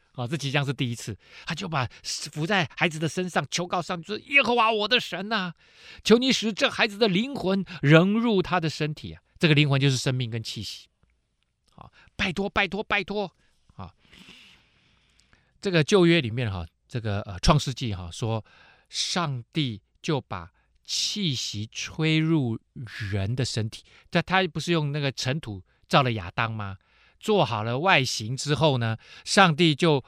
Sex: male